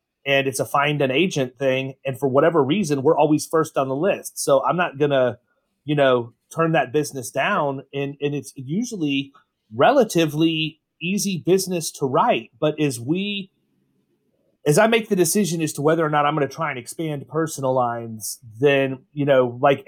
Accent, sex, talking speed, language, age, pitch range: American, male, 180 wpm, English, 30-49, 130-160 Hz